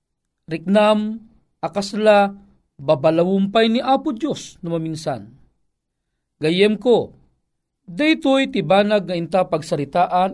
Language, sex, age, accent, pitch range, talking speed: Filipino, male, 40-59, native, 155-215 Hz, 95 wpm